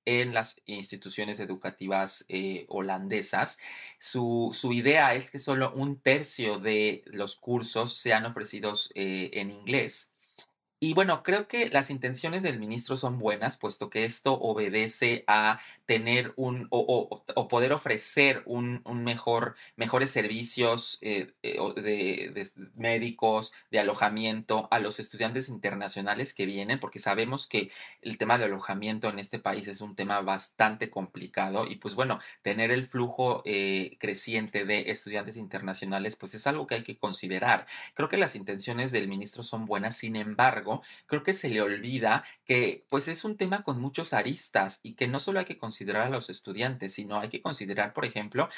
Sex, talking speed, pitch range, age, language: male, 165 wpm, 105-135 Hz, 30-49, Spanish